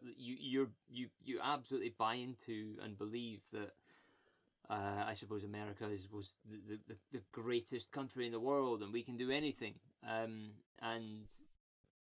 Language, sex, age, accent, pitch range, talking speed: English, male, 20-39, British, 105-120 Hz, 155 wpm